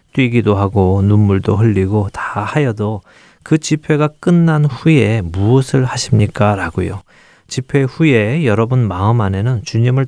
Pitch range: 100-125 Hz